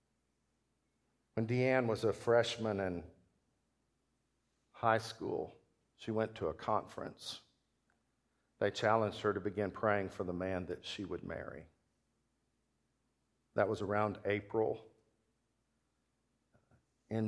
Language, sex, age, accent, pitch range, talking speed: English, male, 50-69, American, 95-110 Hz, 110 wpm